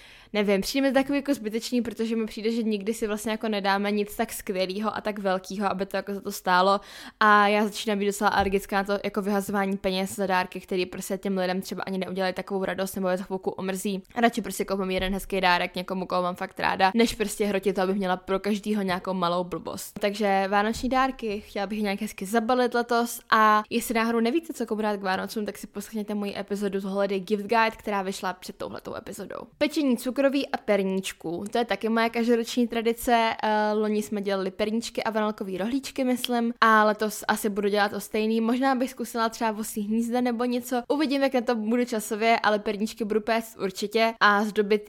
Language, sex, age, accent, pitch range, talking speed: Czech, female, 10-29, native, 195-230 Hz, 205 wpm